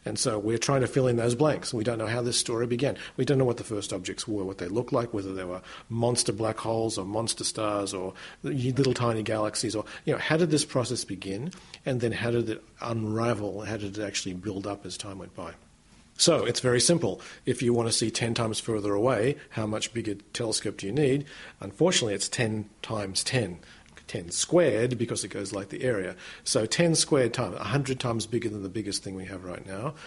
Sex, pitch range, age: male, 100-120 Hz, 50-69